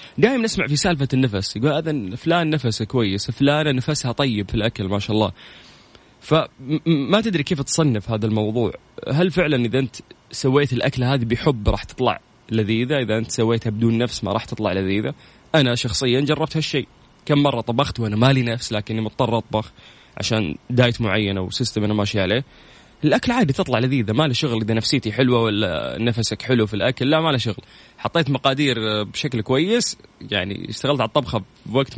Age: 20-39